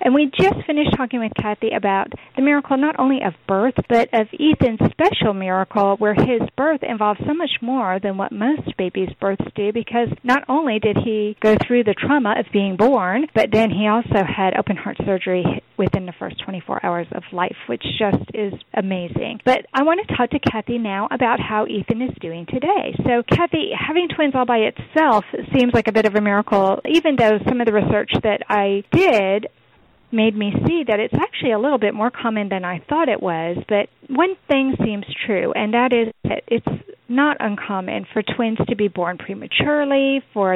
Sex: female